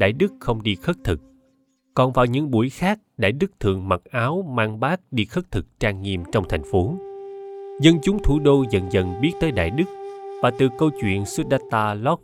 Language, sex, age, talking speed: Vietnamese, male, 20-39, 205 wpm